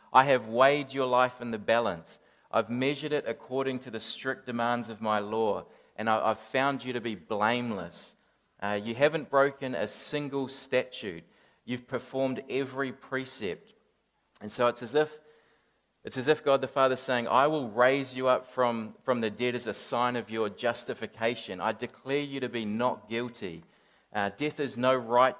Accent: Australian